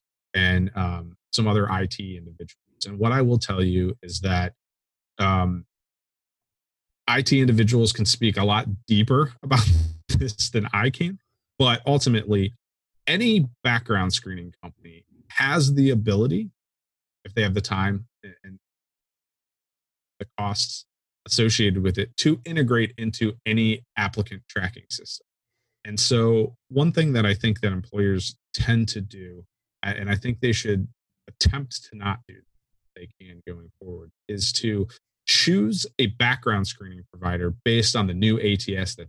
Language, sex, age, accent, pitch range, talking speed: English, male, 30-49, American, 95-120 Hz, 145 wpm